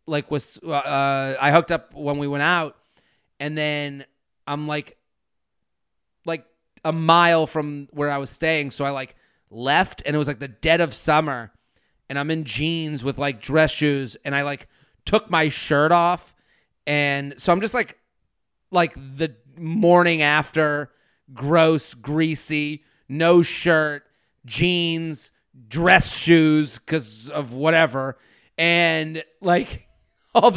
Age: 30-49